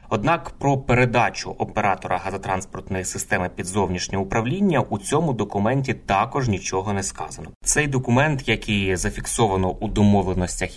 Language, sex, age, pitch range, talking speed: Ukrainian, male, 20-39, 95-115 Hz, 125 wpm